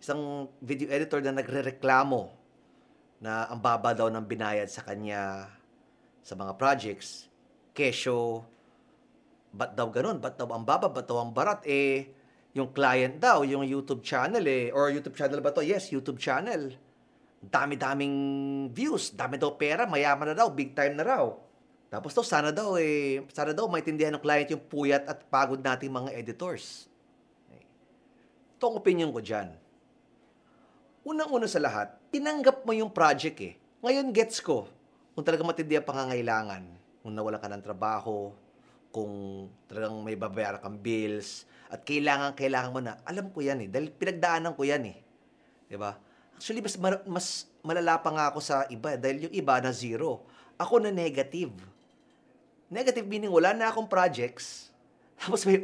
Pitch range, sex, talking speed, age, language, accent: 120-170 Hz, male, 155 wpm, 30-49, Filipino, native